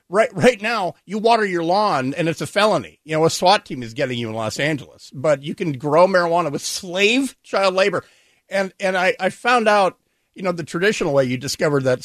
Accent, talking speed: American, 225 wpm